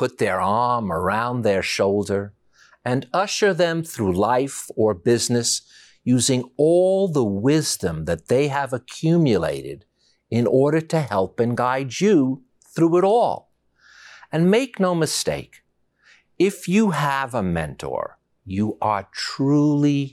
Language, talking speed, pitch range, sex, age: English, 130 wpm, 105-160 Hz, male, 50-69